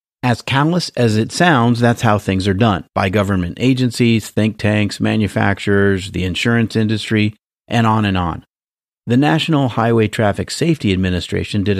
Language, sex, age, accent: English, male, 40-59, American